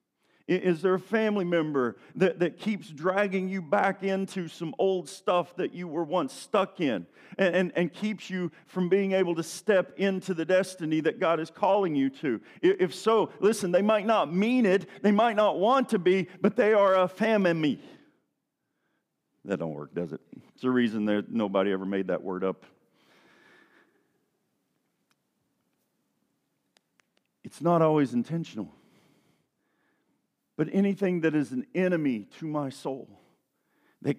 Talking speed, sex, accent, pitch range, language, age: 155 wpm, male, American, 140-190 Hz, English, 50-69